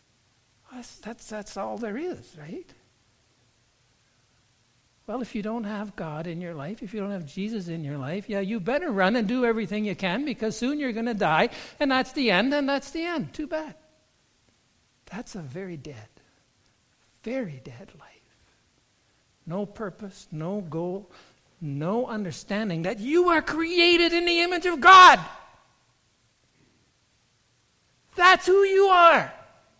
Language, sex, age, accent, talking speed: English, male, 60-79, American, 150 wpm